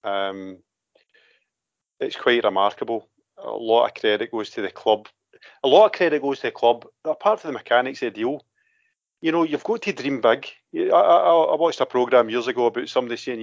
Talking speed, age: 200 wpm, 40-59